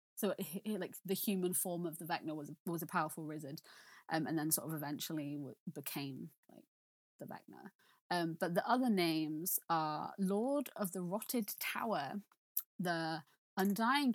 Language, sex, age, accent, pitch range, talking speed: English, female, 20-39, British, 160-205 Hz, 155 wpm